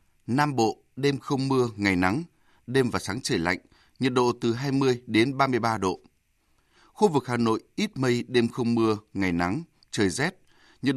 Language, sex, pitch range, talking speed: Vietnamese, male, 110-155 Hz, 180 wpm